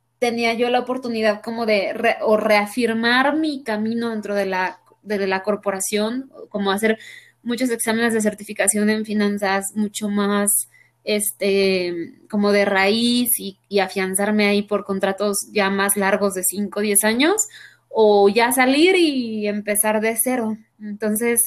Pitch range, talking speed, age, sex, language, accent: 200-230 Hz, 150 wpm, 20-39, female, Spanish, Mexican